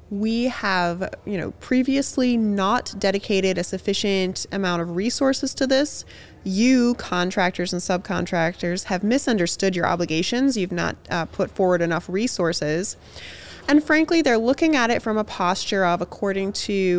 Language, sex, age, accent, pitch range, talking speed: English, female, 20-39, American, 175-235 Hz, 145 wpm